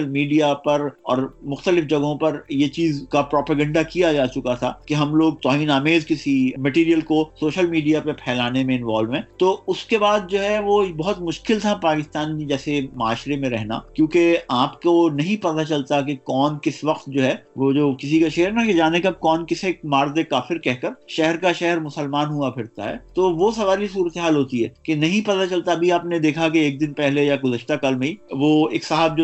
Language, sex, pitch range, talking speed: Urdu, male, 140-170 Hz, 95 wpm